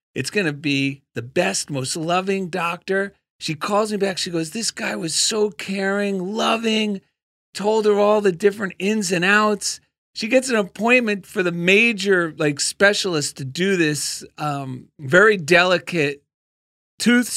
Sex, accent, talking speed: male, American, 155 wpm